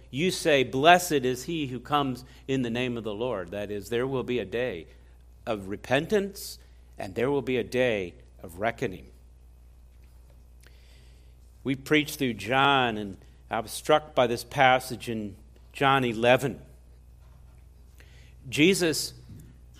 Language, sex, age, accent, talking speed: English, male, 50-69, American, 135 wpm